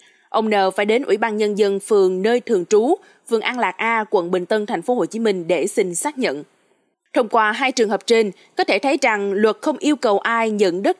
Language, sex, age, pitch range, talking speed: Vietnamese, female, 20-39, 210-320 Hz, 245 wpm